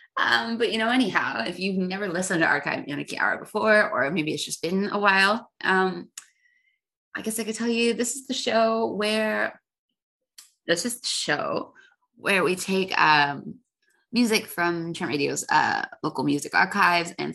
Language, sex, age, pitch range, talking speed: English, female, 20-39, 180-255 Hz, 175 wpm